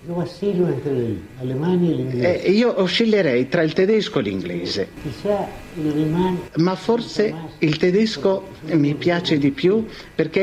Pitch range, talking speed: 130-175 Hz, 100 wpm